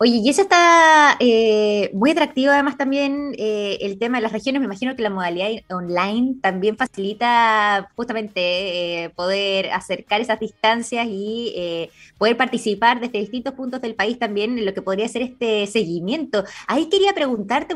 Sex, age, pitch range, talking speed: female, 20-39, 195-270 Hz, 165 wpm